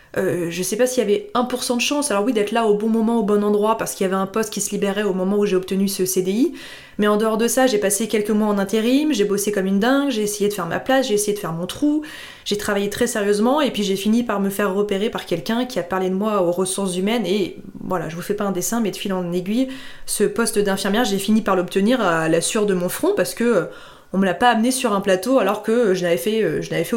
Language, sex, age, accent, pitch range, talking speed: French, female, 20-39, French, 195-240 Hz, 295 wpm